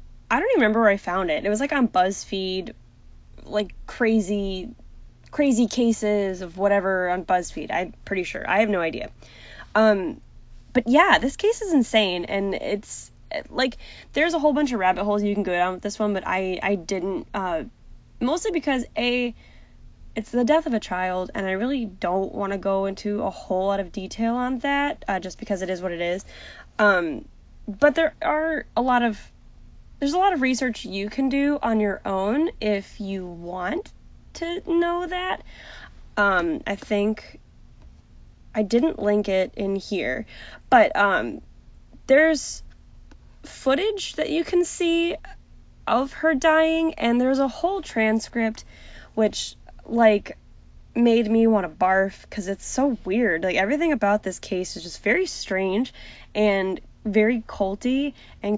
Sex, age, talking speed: female, 10-29, 165 wpm